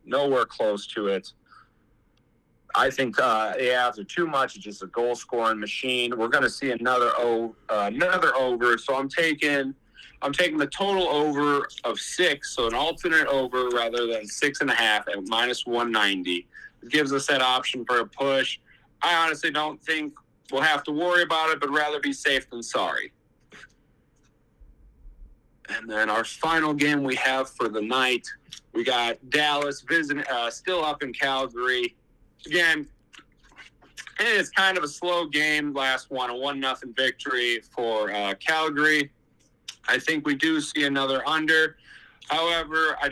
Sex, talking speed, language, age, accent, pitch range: male, 160 wpm, English, 40-59, American, 120-155 Hz